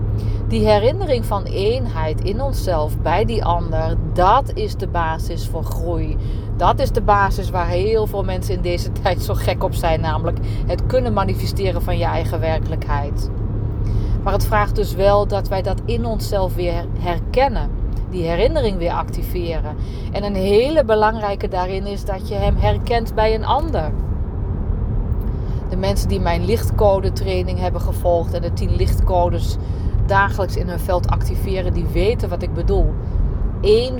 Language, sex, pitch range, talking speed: Dutch, female, 95-105 Hz, 155 wpm